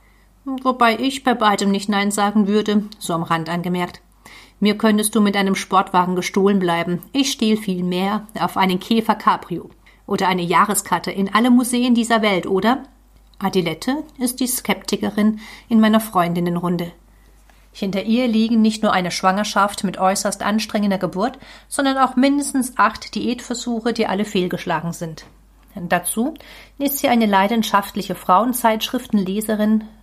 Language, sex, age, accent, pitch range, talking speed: German, female, 40-59, German, 190-240 Hz, 140 wpm